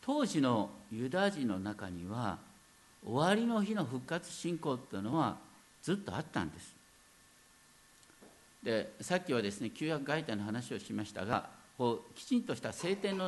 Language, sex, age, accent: Japanese, male, 50-69, native